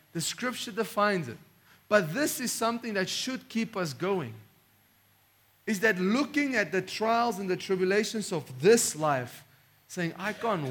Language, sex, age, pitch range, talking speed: English, male, 40-59, 145-205 Hz, 155 wpm